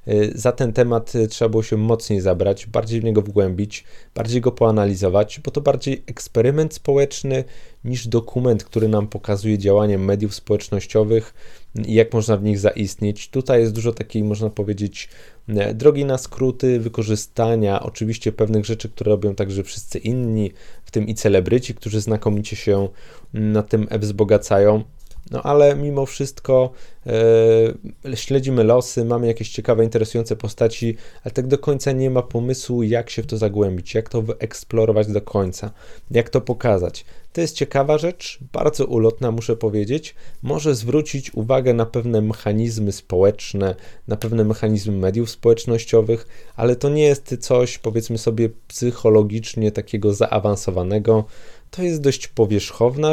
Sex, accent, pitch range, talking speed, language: male, native, 105-125 Hz, 145 wpm, Polish